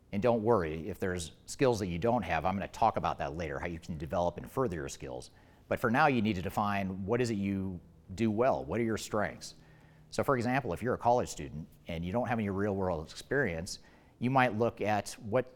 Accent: American